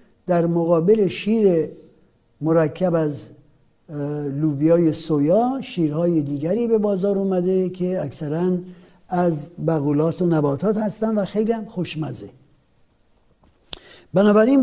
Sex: male